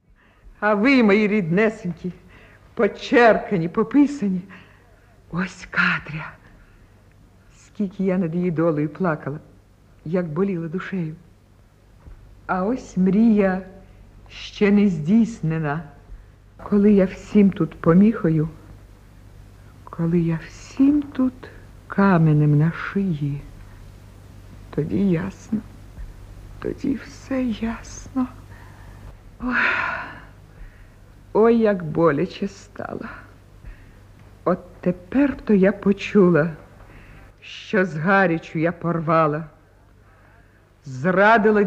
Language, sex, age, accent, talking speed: Ukrainian, female, 50-69, native, 80 wpm